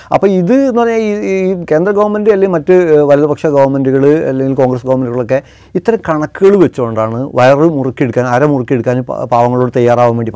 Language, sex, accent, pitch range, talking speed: Malayalam, male, native, 135-185 Hz, 150 wpm